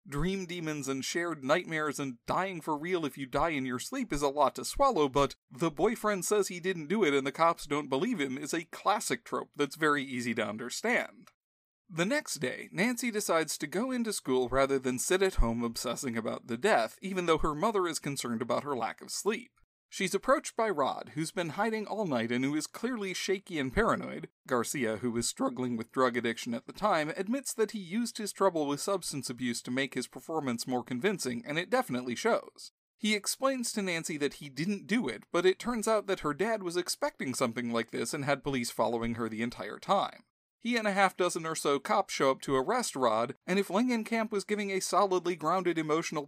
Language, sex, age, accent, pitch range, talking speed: English, male, 40-59, American, 135-205 Hz, 220 wpm